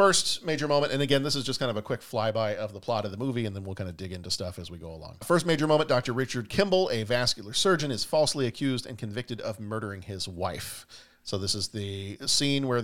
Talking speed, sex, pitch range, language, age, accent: 255 wpm, male, 100-130 Hz, English, 40-59, American